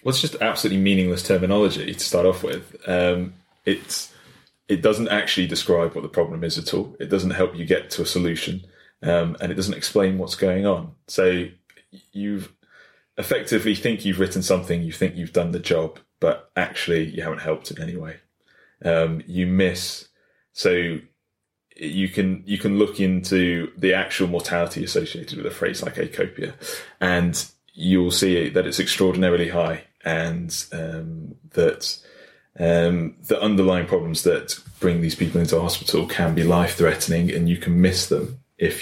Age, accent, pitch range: 20-39, British, 85-95 Hz